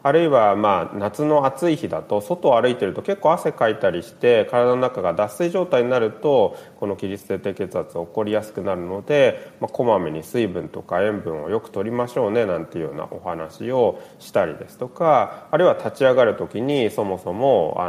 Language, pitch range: Japanese, 110-175 Hz